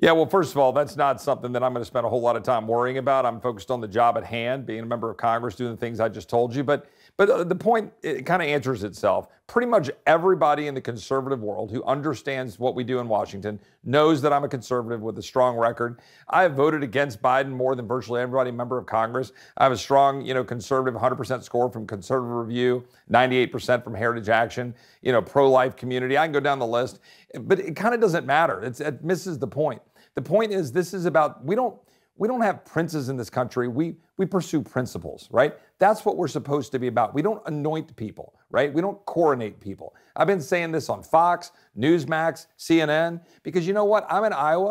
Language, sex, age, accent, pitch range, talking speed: English, male, 50-69, American, 125-170 Hz, 230 wpm